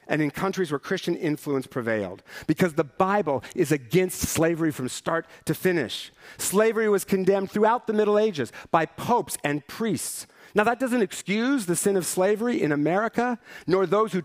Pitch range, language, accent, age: 150-205 Hz, English, American, 50-69